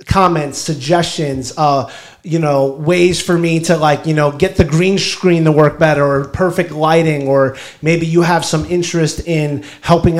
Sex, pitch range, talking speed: male, 150-180 Hz, 175 wpm